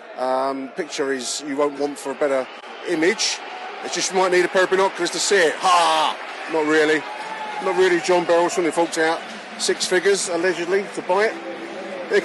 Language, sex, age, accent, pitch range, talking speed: English, male, 30-49, British, 160-195 Hz, 180 wpm